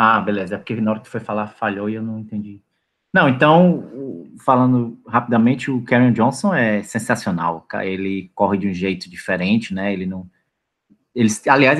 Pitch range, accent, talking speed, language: 100-120 Hz, Brazilian, 180 wpm, Portuguese